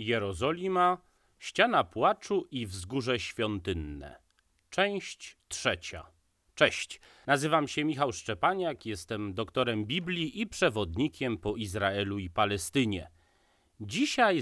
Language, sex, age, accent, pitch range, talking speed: Polish, male, 30-49, native, 95-150 Hz, 95 wpm